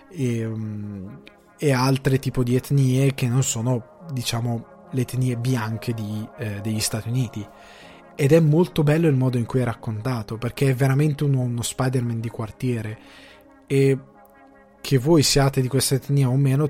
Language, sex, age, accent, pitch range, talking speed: Italian, male, 20-39, native, 115-140 Hz, 160 wpm